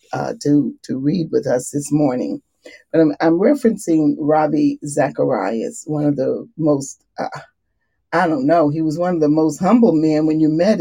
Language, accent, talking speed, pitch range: English, American, 185 wpm, 145-180 Hz